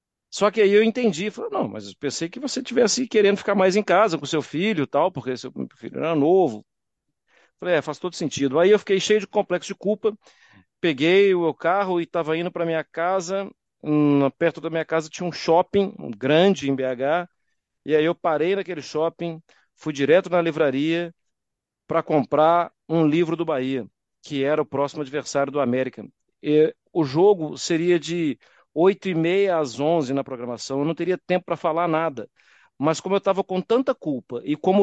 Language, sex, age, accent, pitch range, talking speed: Portuguese, male, 50-69, Brazilian, 140-190 Hz, 195 wpm